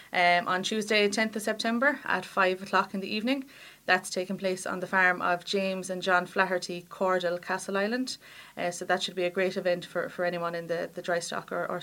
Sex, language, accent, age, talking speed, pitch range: female, English, Irish, 30-49, 220 wpm, 180-205 Hz